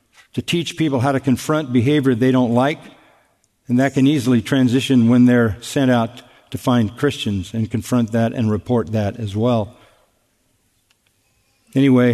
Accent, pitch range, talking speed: American, 115-145 Hz, 155 wpm